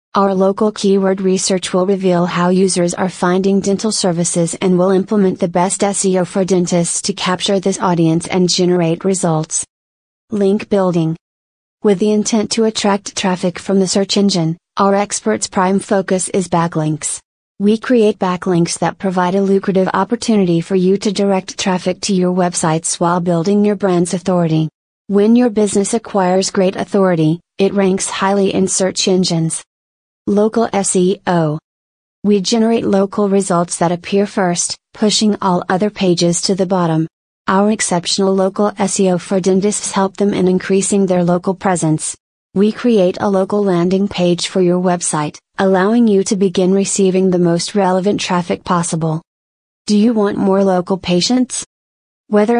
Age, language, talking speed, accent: 30-49, English, 150 wpm, American